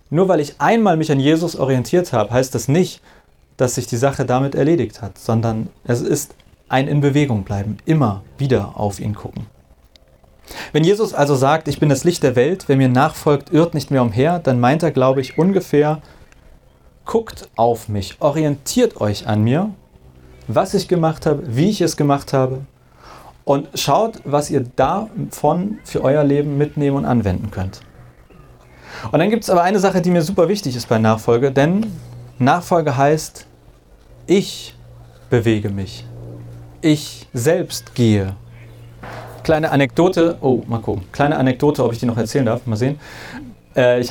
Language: German